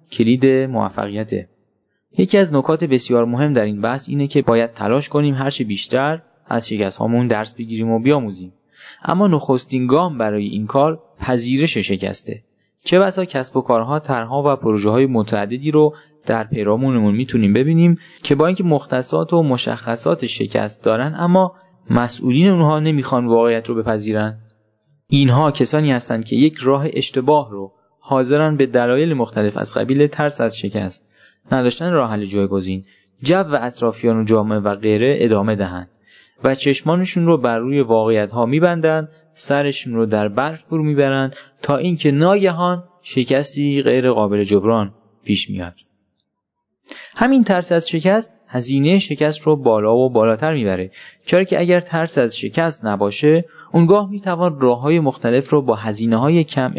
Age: 20-39